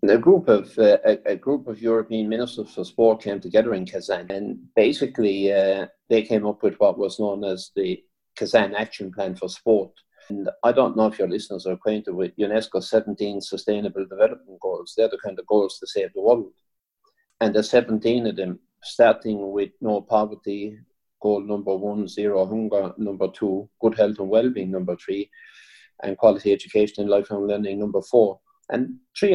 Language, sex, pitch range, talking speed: English, male, 105-130 Hz, 180 wpm